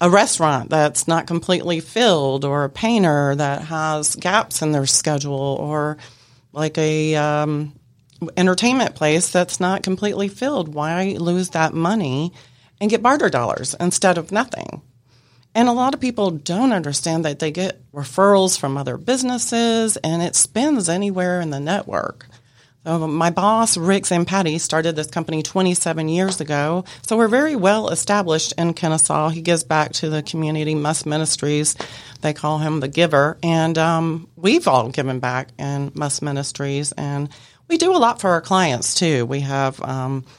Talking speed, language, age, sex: 160 wpm, English, 30-49, female